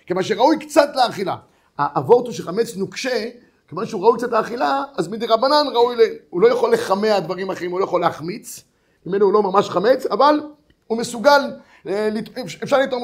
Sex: male